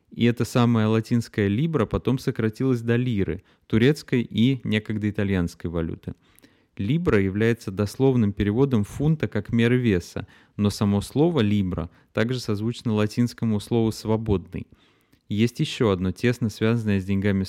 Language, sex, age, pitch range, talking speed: Russian, male, 20-39, 95-120 Hz, 135 wpm